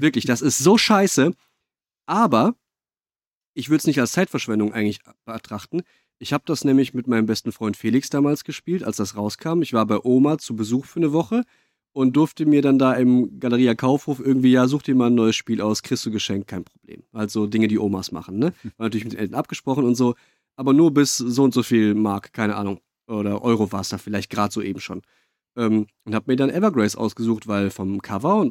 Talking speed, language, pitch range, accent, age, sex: 220 wpm, German, 110-145 Hz, German, 40-59, male